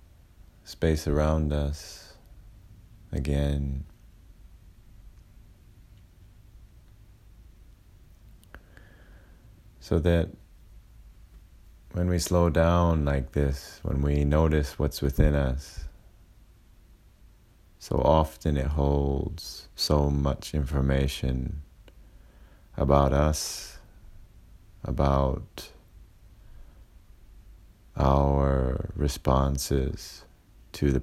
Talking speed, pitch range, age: 60 wpm, 70-90 Hz, 30-49